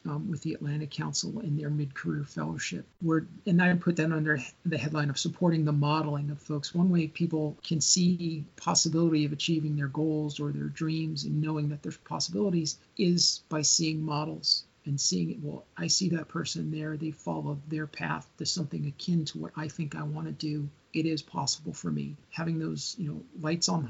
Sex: male